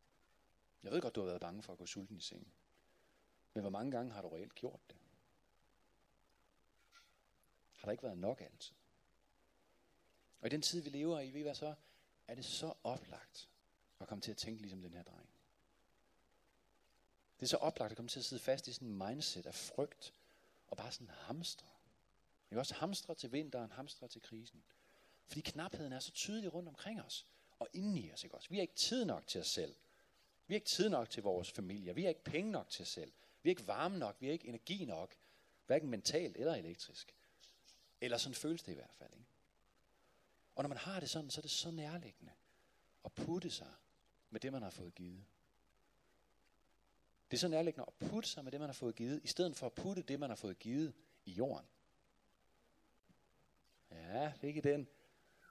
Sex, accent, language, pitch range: male, native, Danish, 115-165 Hz